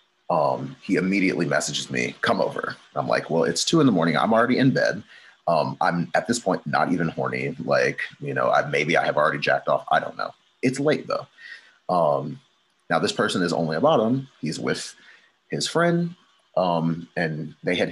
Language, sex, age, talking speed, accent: English, male, 30-49, 195 wpm, American